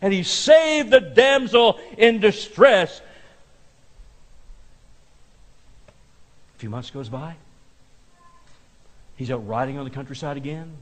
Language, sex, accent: English, male, American